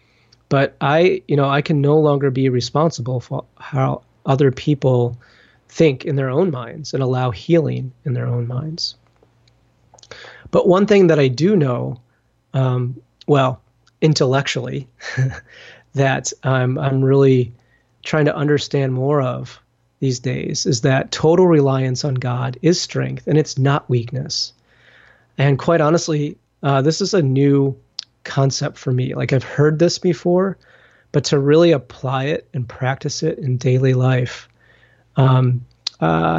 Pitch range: 125-145 Hz